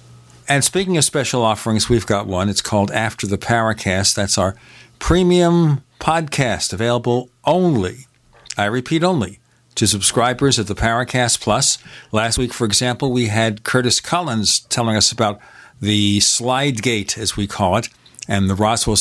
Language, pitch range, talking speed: English, 105-125 Hz, 155 wpm